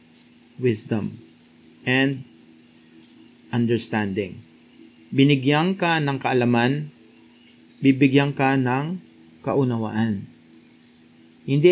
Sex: male